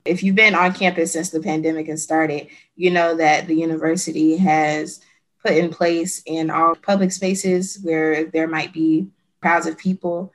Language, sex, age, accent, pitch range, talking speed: English, female, 20-39, American, 160-180 Hz, 175 wpm